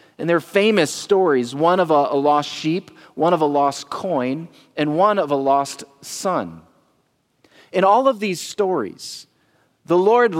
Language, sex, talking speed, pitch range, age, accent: English, male, 160 wpm, 140-200 Hz, 40-59, American